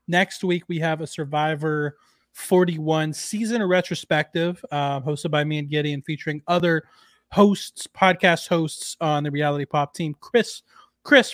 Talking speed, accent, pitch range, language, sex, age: 145 wpm, American, 150-185 Hz, English, male, 30-49